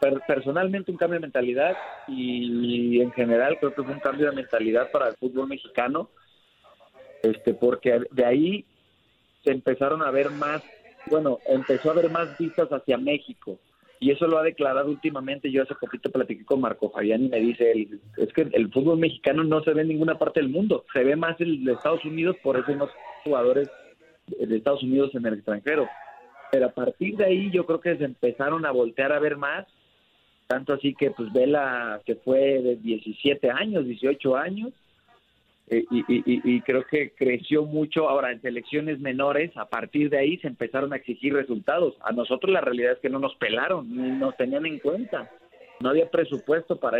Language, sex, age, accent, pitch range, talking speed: Spanish, male, 40-59, Mexican, 125-160 Hz, 190 wpm